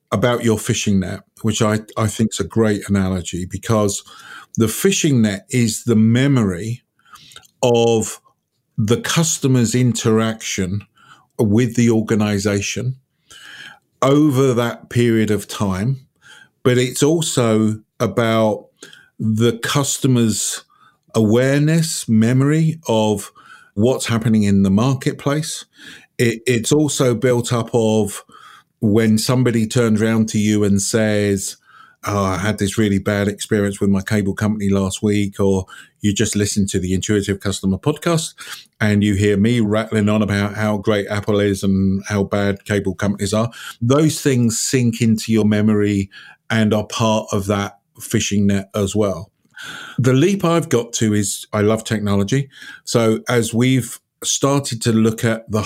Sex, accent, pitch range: male, British, 105-120 Hz